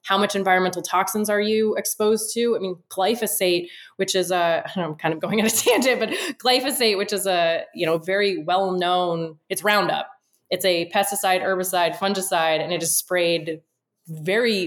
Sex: female